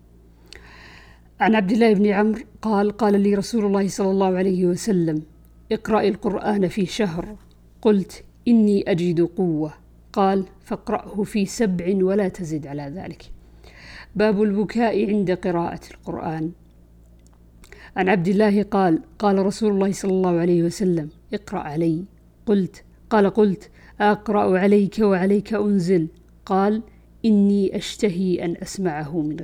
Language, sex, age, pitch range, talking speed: Arabic, female, 50-69, 180-215 Hz, 125 wpm